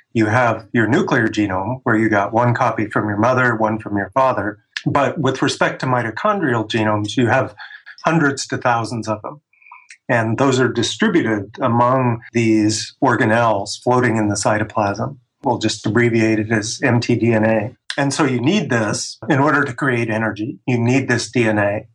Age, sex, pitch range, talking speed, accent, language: 30-49, male, 110-140 Hz, 165 wpm, American, English